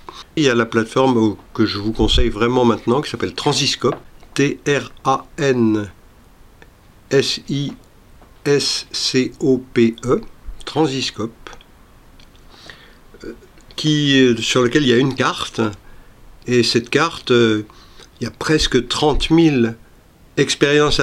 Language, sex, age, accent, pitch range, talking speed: French, male, 50-69, French, 110-135 Hz, 95 wpm